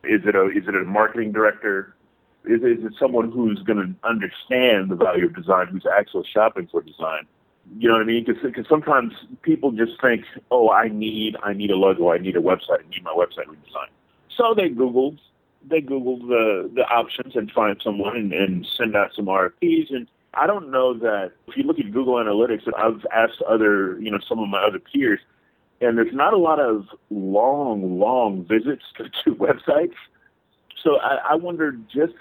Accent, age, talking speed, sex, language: American, 40-59, 195 wpm, male, English